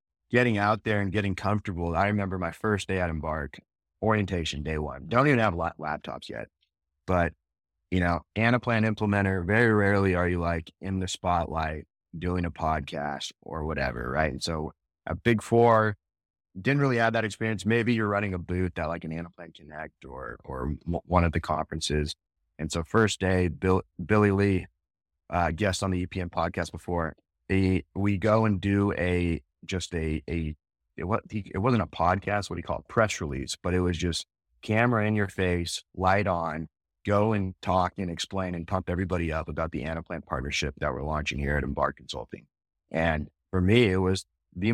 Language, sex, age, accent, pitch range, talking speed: English, male, 30-49, American, 80-100 Hz, 180 wpm